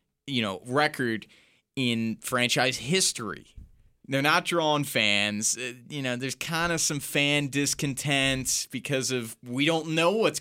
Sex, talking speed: male, 145 wpm